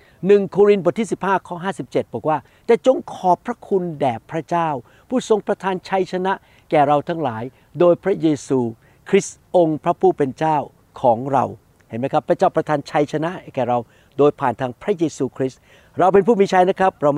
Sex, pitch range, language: male, 135-180 Hz, Thai